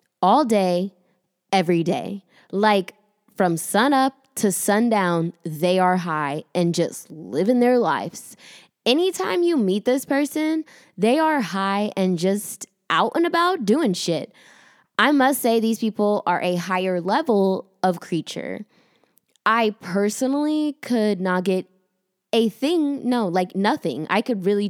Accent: American